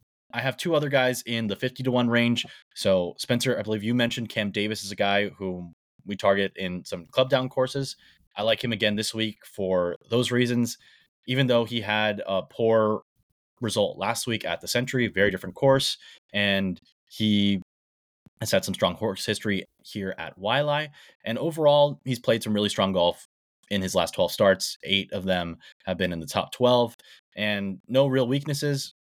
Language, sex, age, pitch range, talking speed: English, male, 20-39, 95-125 Hz, 190 wpm